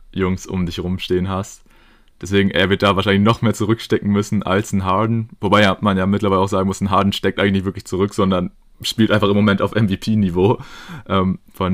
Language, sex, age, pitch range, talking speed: German, male, 20-39, 95-105 Hz, 200 wpm